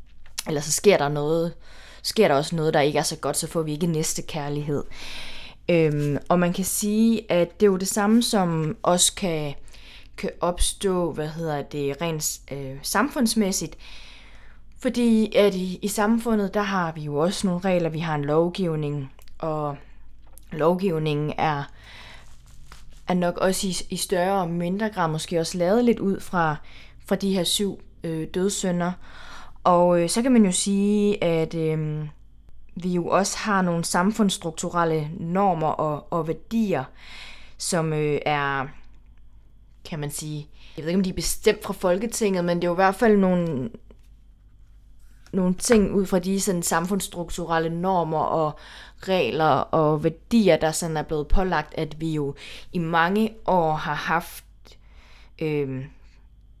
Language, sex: Danish, female